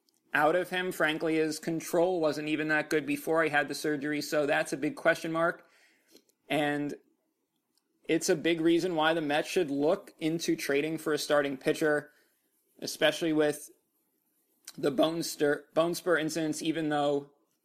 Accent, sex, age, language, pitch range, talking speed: American, male, 30-49, English, 150-185 Hz, 155 wpm